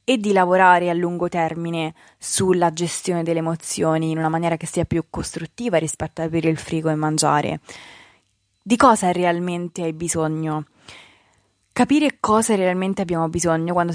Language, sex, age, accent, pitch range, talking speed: Italian, female, 20-39, native, 160-200 Hz, 150 wpm